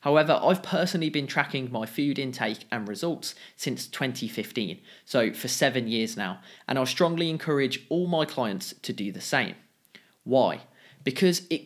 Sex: male